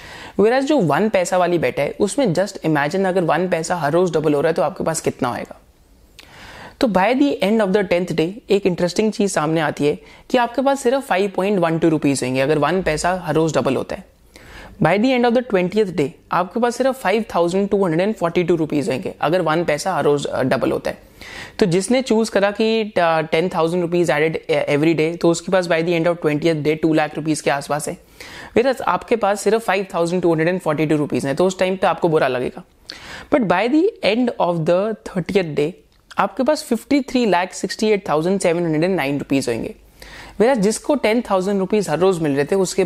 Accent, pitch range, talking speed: native, 165-230 Hz, 210 wpm